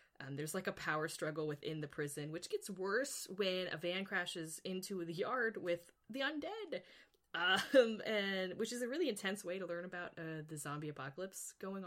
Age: 20-39